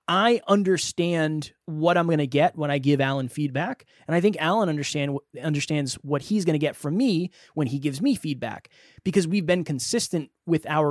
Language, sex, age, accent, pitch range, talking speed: English, male, 20-39, American, 145-185 Hz, 195 wpm